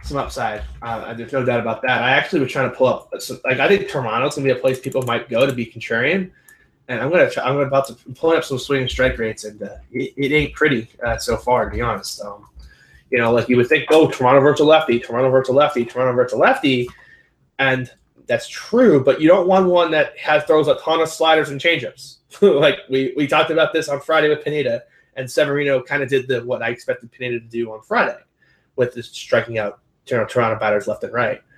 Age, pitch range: 20-39, 120-150 Hz